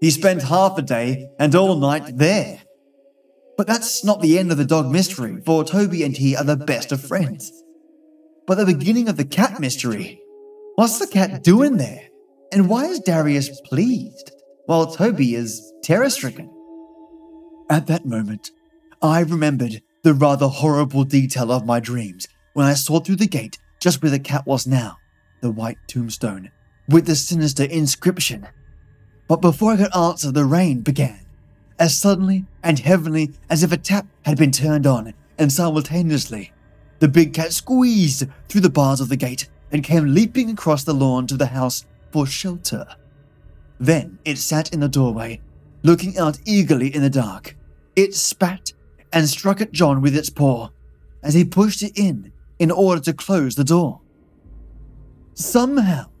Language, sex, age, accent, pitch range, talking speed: English, male, 20-39, British, 135-185 Hz, 165 wpm